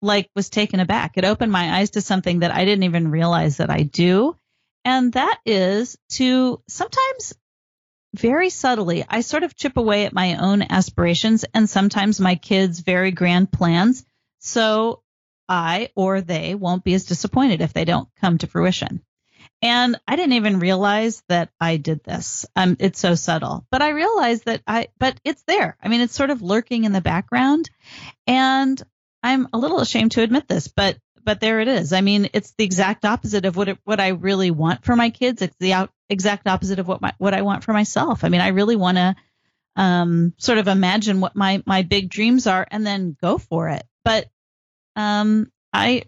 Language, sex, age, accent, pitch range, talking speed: English, female, 40-59, American, 185-230 Hz, 195 wpm